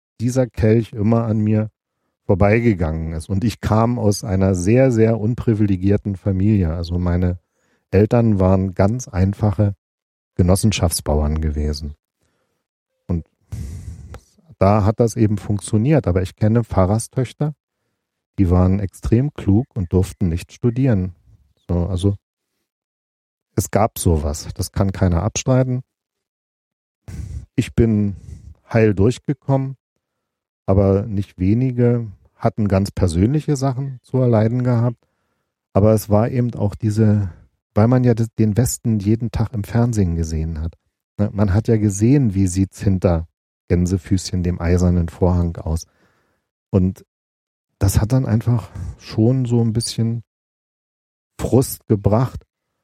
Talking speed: 120 wpm